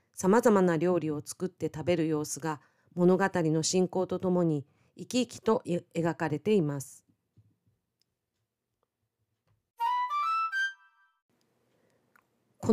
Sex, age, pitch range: female, 40-59, 160-205 Hz